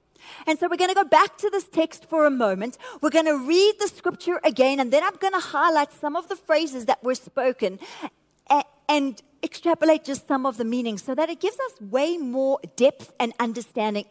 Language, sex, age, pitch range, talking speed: English, female, 40-59, 235-340 Hz, 215 wpm